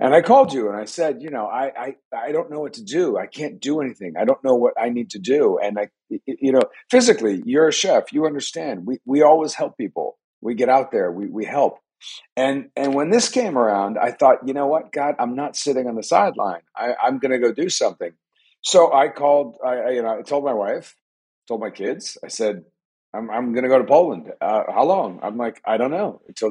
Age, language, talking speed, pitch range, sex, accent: 50-69, English, 245 wpm, 110-145 Hz, male, American